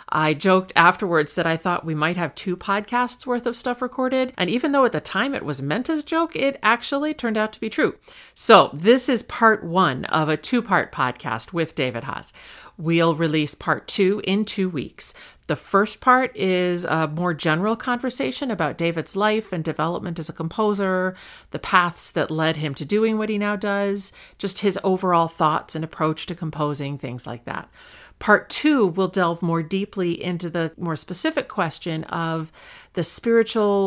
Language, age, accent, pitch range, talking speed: English, 40-59, American, 160-210 Hz, 185 wpm